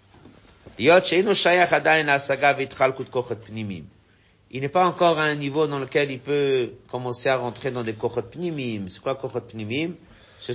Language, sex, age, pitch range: French, male, 50-69, 110-155 Hz